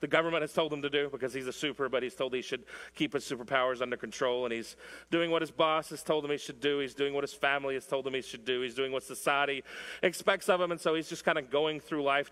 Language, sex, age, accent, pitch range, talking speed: English, male, 40-59, American, 130-165 Hz, 290 wpm